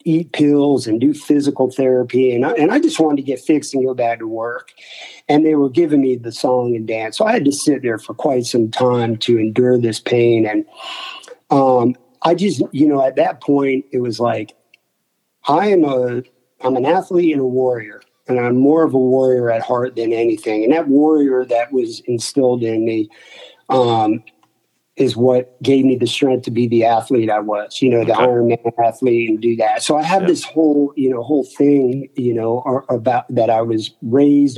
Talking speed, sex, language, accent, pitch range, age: 205 wpm, male, English, American, 120-140 Hz, 50-69